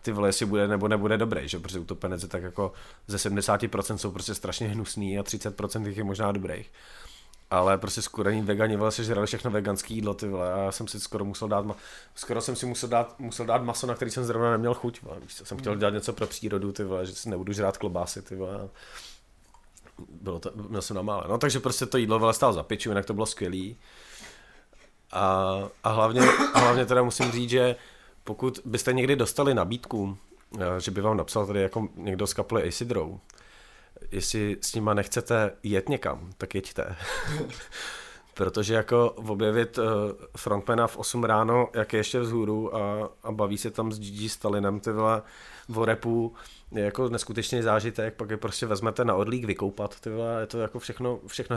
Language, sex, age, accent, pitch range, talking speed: Czech, male, 30-49, native, 100-120 Hz, 185 wpm